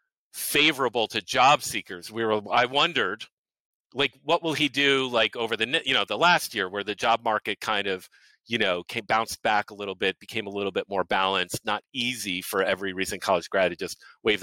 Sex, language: male, English